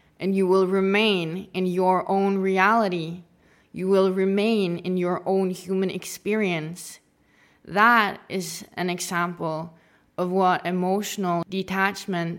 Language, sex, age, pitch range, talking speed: English, female, 20-39, 185-210 Hz, 115 wpm